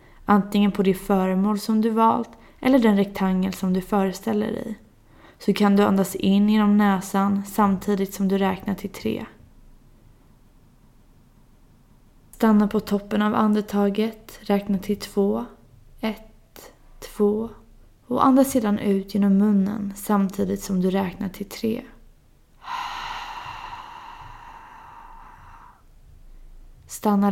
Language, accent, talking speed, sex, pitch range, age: Swedish, native, 110 wpm, female, 195-220 Hz, 20-39